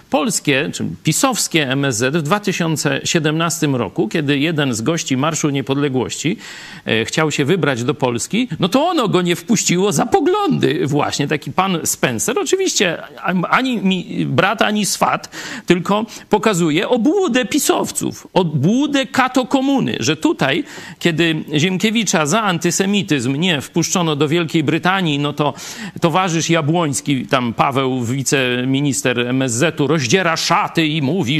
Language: Polish